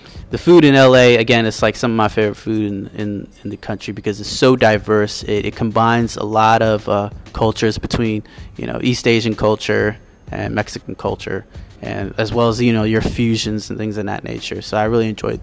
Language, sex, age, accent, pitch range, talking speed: English, male, 20-39, American, 105-120 Hz, 215 wpm